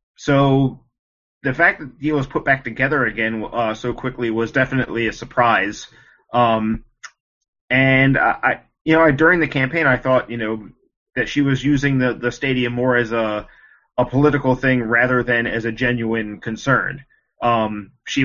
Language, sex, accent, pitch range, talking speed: English, male, American, 115-130 Hz, 170 wpm